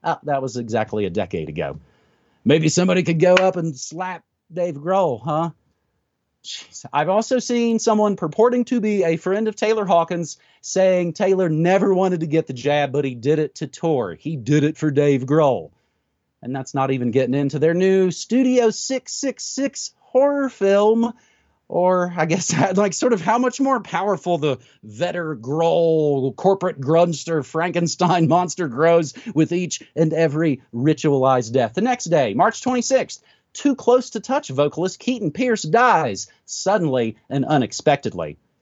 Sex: male